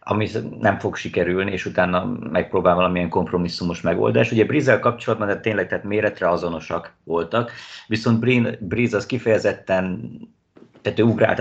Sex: male